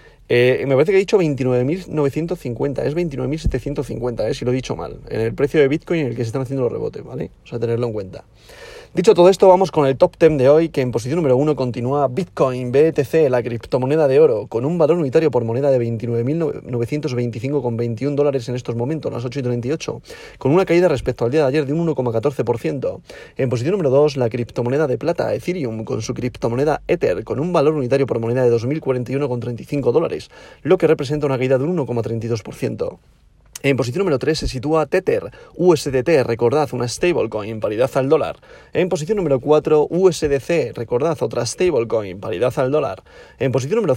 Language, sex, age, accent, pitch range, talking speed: Spanish, male, 30-49, Spanish, 125-160 Hz, 195 wpm